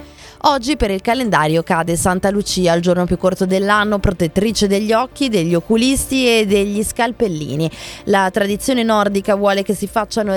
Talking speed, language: 155 wpm, Italian